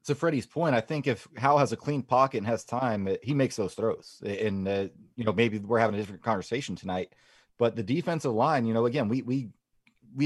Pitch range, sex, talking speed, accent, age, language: 115-140 Hz, male, 230 wpm, American, 30-49, English